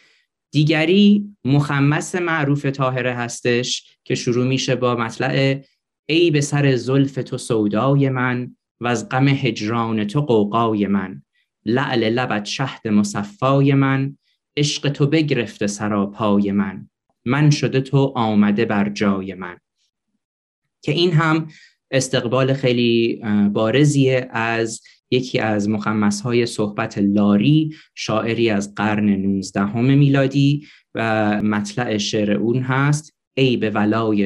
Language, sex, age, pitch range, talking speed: Persian, male, 30-49, 105-135 Hz, 115 wpm